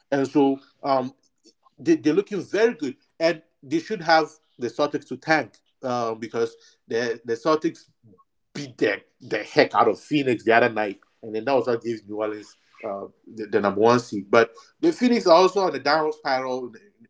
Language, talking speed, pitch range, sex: English, 190 wpm, 125-170 Hz, male